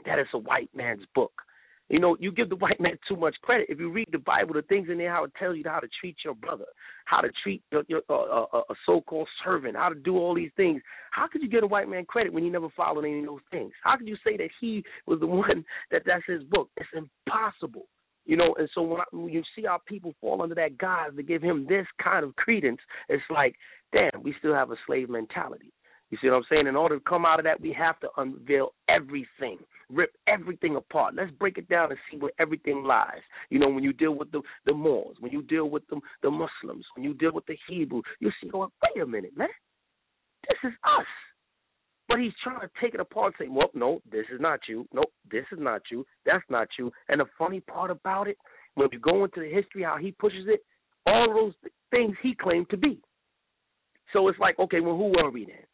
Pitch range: 160-225 Hz